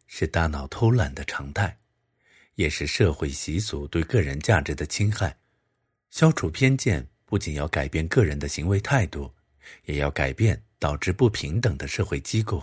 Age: 50-69